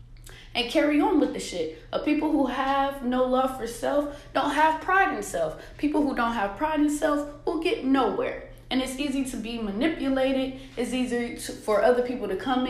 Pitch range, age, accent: 210-270 Hz, 20-39, American